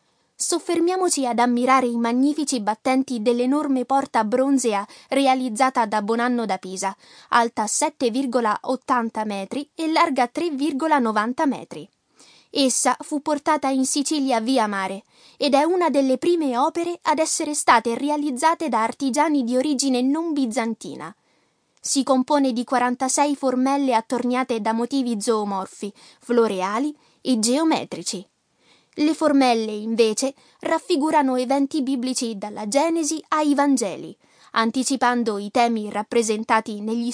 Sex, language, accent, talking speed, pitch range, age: female, Italian, native, 115 wpm, 230-290 Hz, 20-39